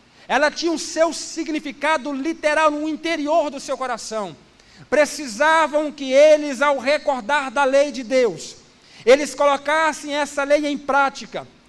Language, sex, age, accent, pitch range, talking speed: Portuguese, male, 50-69, Brazilian, 265-310 Hz, 135 wpm